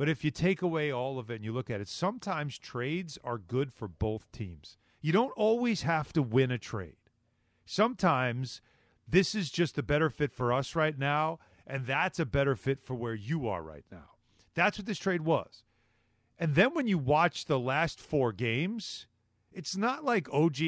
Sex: male